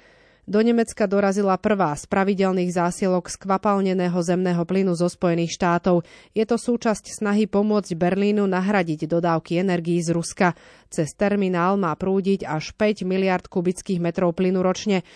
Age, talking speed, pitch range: 30-49, 140 wpm, 175-205 Hz